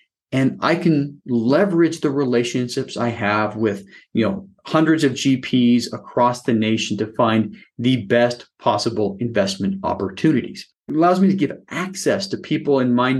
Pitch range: 115-145 Hz